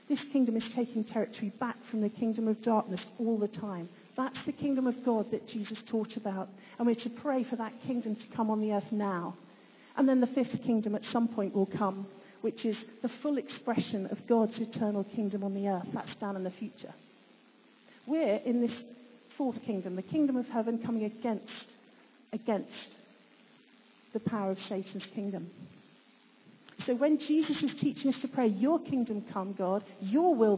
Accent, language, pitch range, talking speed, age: British, English, 210-255 Hz, 185 wpm, 50-69